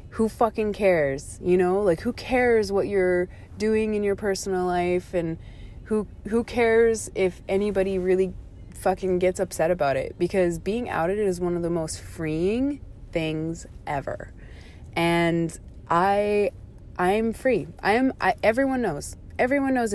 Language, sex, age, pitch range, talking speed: English, female, 20-39, 155-200 Hz, 145 wpm